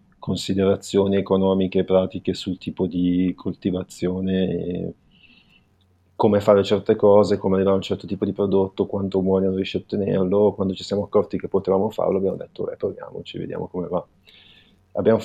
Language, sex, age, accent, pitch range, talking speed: Italian, male, 30-49, native, 95-105 Hz, 155 wpm